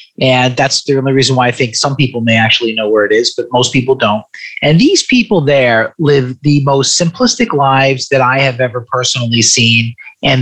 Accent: American